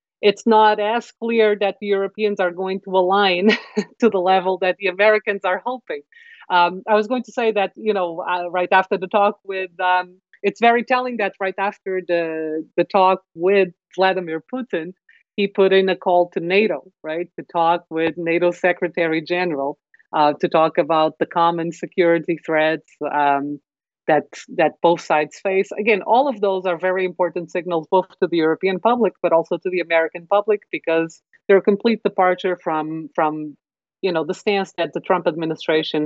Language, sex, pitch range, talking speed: English, female, 165-195 Hz, 180 wpm